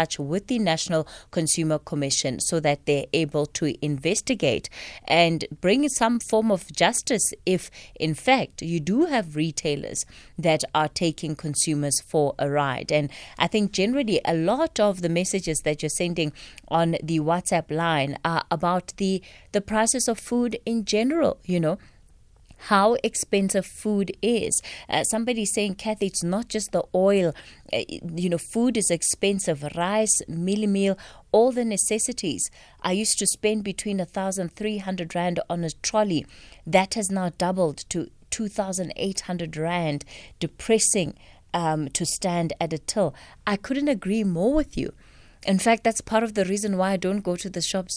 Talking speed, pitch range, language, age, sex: 160 wpm, 160-210 Hz, English, 20-39, female